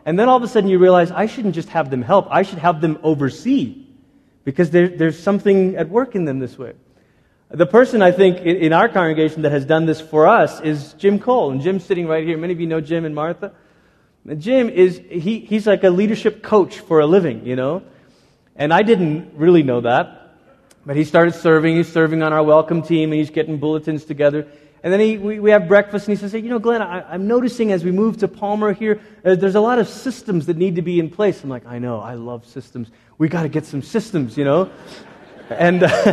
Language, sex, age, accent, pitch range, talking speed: English, male, 30-49, American, 155-205 Hz, 240 wpm